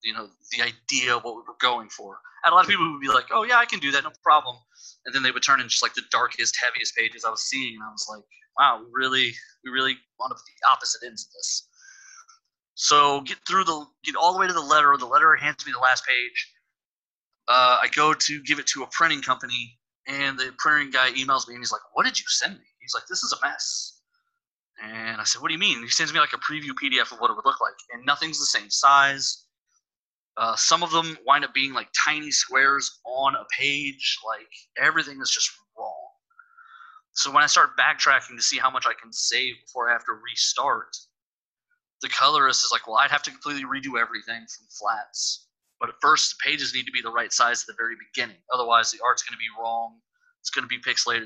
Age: 20-39